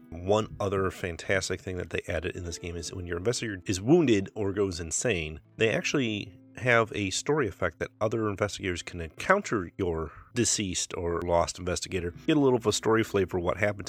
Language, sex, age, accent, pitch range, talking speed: English, male, 30-49, American, 90-115 Hz, 190 wpm